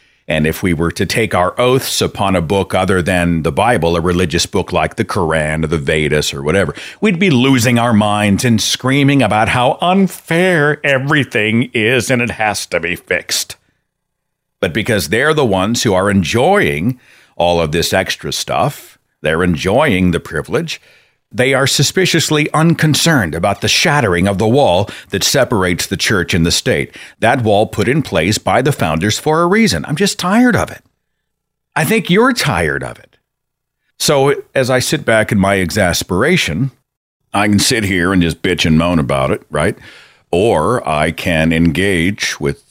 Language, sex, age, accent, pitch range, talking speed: English, male, 50-69, American, 85-130 Hz, 175 wpm